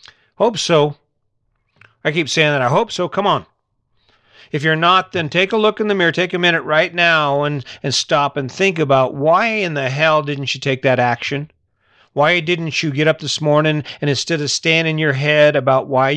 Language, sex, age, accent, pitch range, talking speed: English, male, 40-59, American, 130-155 Hz, 210 wpm